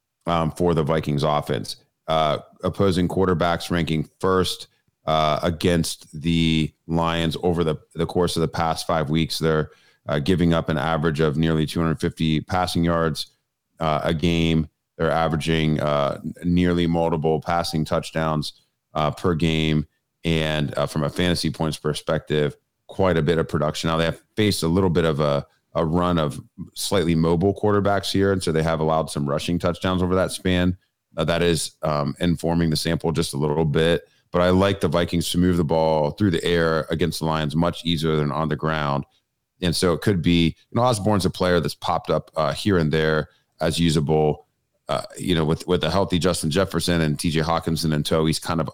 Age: 30-49